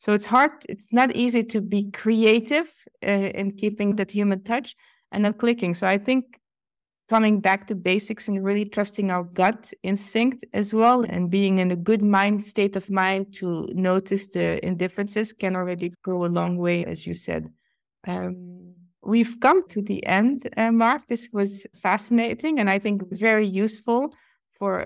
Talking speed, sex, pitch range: 175 wpm, female, 180-215 Hz